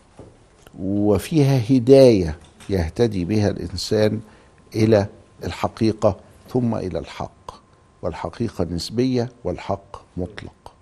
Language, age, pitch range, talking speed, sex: Arabic, 50-69, 95-120 Hz, 80 wpm, male